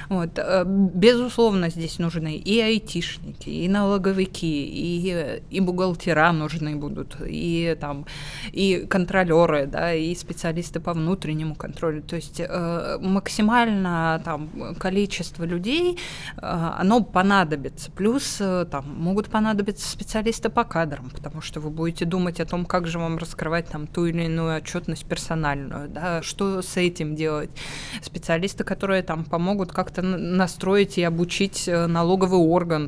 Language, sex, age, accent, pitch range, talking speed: Russian, female, 20-39, native, 155-190 Hz, 130 wpm